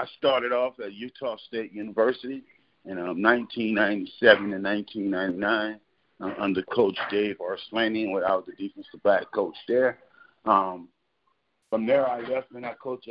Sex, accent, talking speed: male, American, 140 wpm